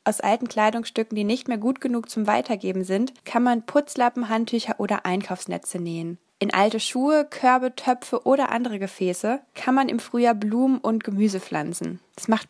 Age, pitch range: 20-39, 195-240 Hz